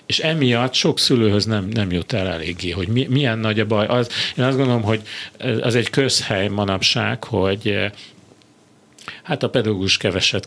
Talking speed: 165 wpm